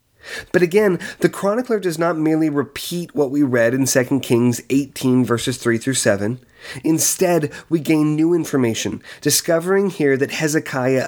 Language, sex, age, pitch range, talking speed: English, male, 30-49, 120-150 Hz, 145 wpm